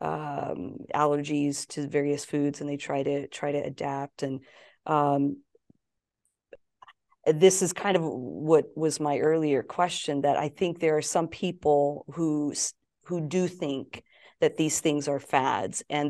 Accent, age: American, 40-59